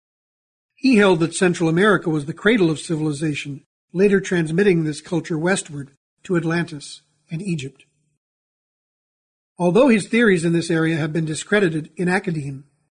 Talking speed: 140 wpm